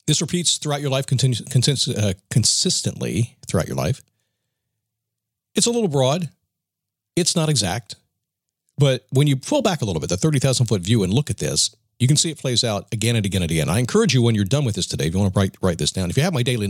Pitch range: 110-150 Hz